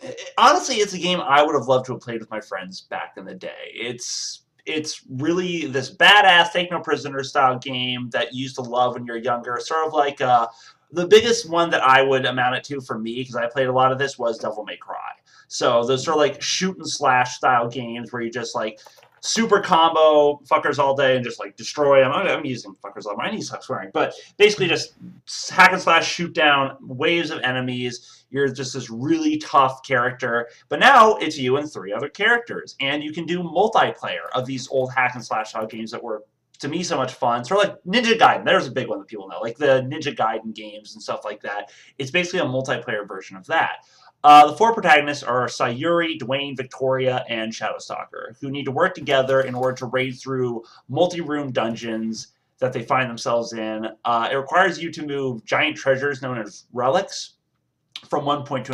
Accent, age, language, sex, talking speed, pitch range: American, 30-49, English, male, 210 wpm, 125-165 Hz